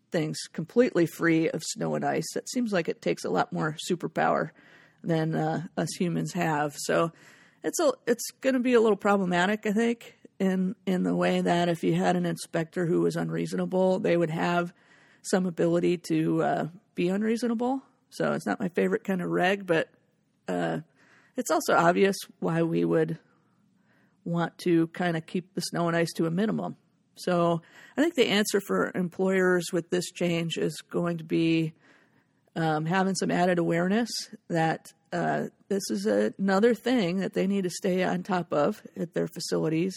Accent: American